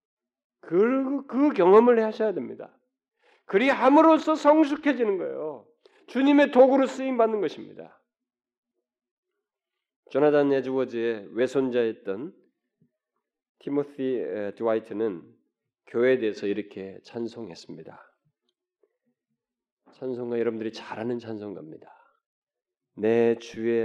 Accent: native